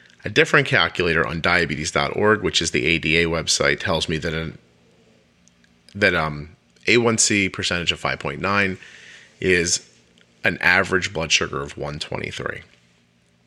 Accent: American